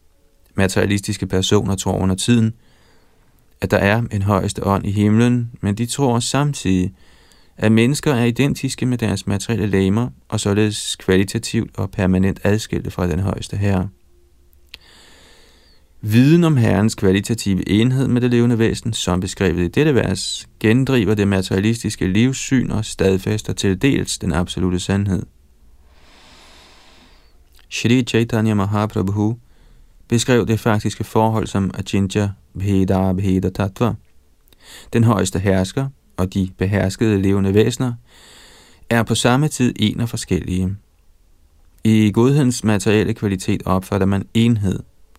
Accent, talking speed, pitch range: native, 120 wpm, 95-115 Hz